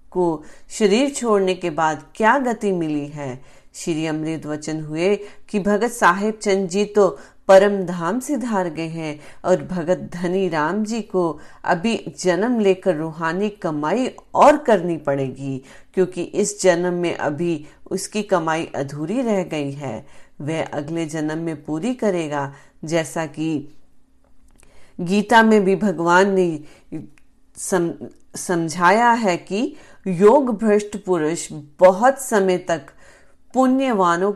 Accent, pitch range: native, 160-205 Hz